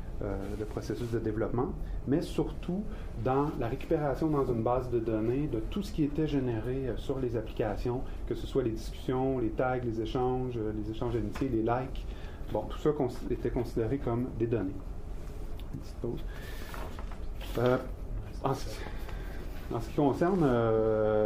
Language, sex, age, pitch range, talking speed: French, male, 30-49, 105-140 Hz, 165 wpm